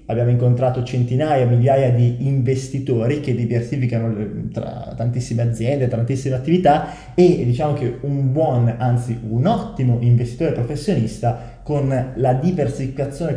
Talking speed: 115 wpm